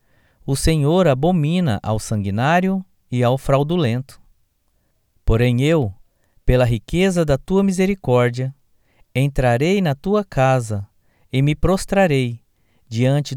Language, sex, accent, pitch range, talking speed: Portuguese, male, Brazilian, 115-175 Hz, 105 wpm